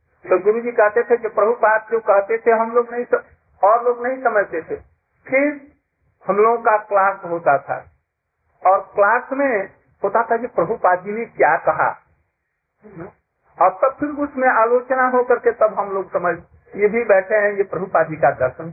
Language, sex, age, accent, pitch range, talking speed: Hindi, male, 50-69, native, 140-225 Hz, 180 wpm